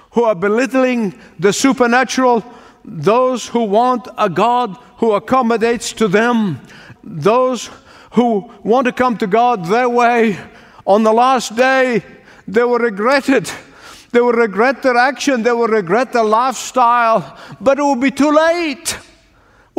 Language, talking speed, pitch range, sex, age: English, 145 wpm, 190-240 Hz, male, 50-69